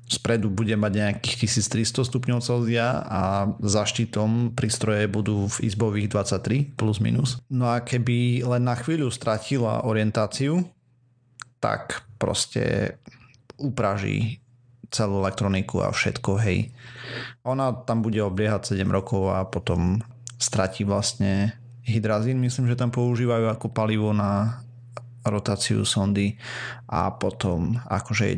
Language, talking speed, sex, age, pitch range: Slovak, 120 wpm, male, 30-49, 100-120 Hz